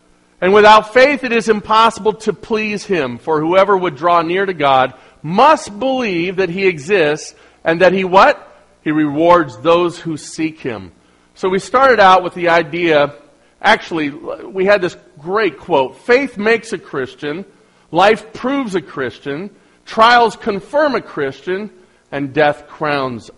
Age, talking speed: 50-69, 150 wpm